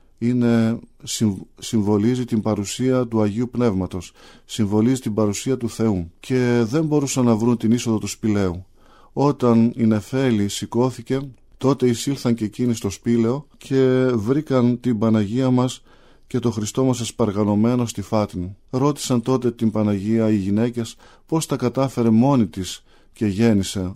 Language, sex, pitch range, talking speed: Greek, male, 110-130 Hz, 140 wpm